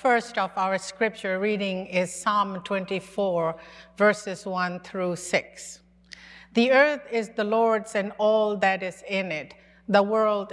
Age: 50-69